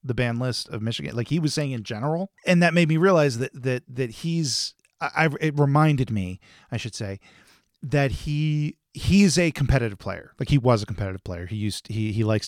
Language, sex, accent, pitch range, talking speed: English, male, American, 110-145 Hz, 210 wpm